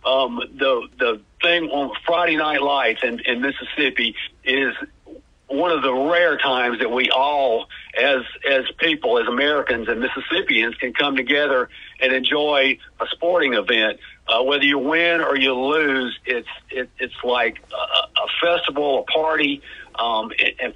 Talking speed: 155 wpm